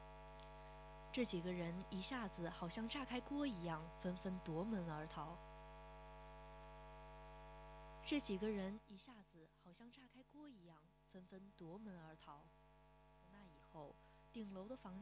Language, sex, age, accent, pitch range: Chinese, female, 20-39, native, 165-215 Hz